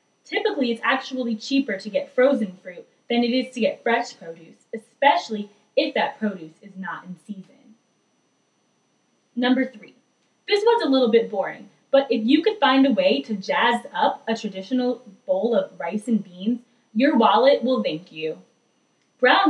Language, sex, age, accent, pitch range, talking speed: English, female, 20-39, American, 215-280 Hz, 165 wpm